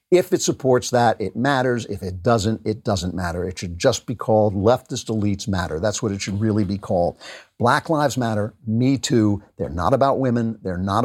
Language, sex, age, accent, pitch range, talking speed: English, male, 50-69, American, 100-135 Hz, 205 wpm